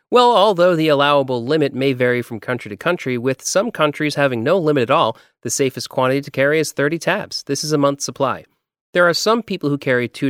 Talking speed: 225 wpm